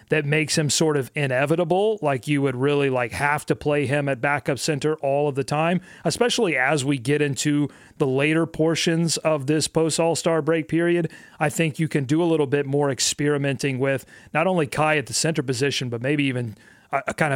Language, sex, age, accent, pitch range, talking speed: English, male, 30-49, American, 135-170 Hz, 205 wpm